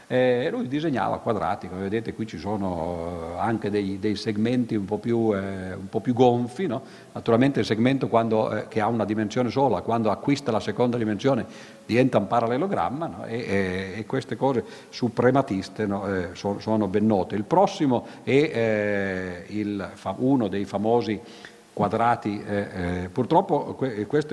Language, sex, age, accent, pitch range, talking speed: Italian, male, 50-69, native, 105-135 Hz, 140 wpm